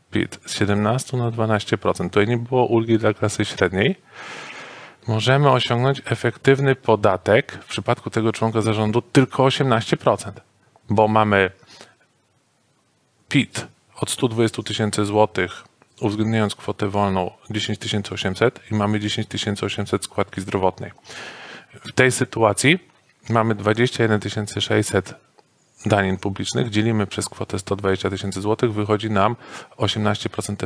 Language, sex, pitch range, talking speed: Polish, male, 100-120 Hz, 110 wpm